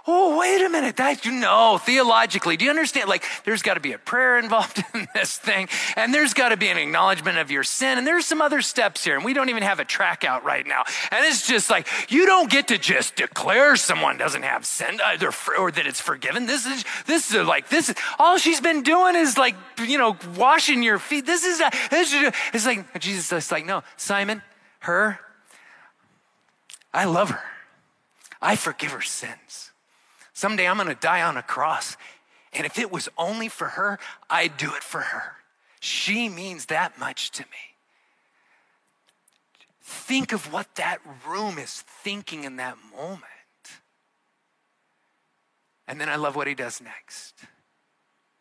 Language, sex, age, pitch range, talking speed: English, male, 30-49, 190-290 Hz, 180 wpm